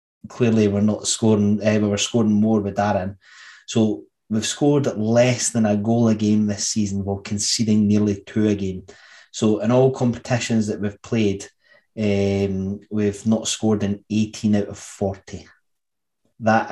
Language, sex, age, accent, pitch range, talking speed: English, male, 20-39, British, 100-115 Hz, 160 wpm